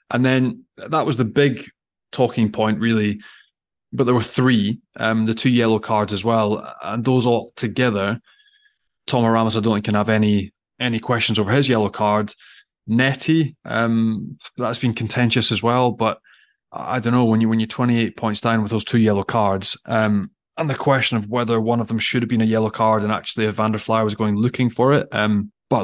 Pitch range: 105-120 Hz